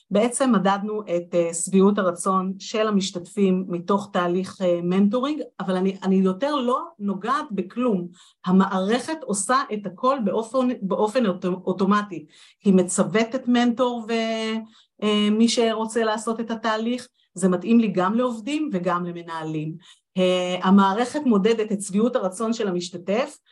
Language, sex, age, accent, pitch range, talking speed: Hebrew, female, 40-59, native, 190-250 Hz, 115 wpm